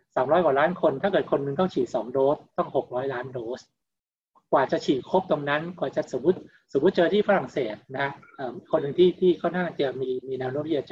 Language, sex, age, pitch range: Thai, male, 60-79, 140-190 Hz